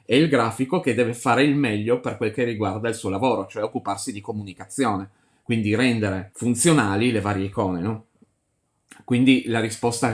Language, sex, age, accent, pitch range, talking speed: Italian, male, 20-39, native, 100-120 Hz, 170 wpm